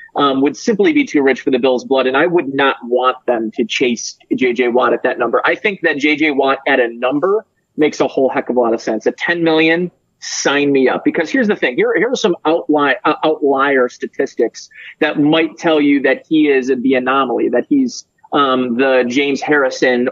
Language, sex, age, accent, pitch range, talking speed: English, male, 30-49, American, 130-160 Hz, 220 wpm